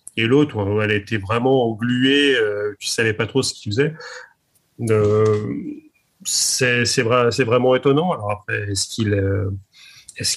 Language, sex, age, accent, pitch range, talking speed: French, male, 30-49, French, 110-125 Hz, 120 wpm